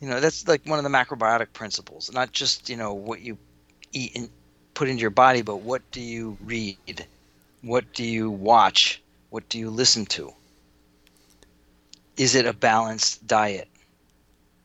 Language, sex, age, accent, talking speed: English, male, 40-59, American, 160 wpm